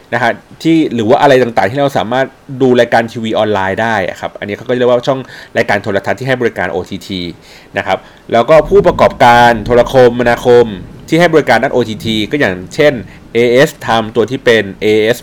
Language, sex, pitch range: Thai, male, 105-140 Hz